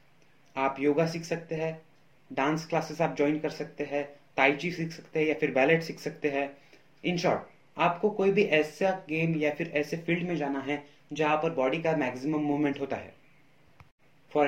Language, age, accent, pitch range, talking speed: Hindi, 30-49, native, 145-170 Hz, 185 wpm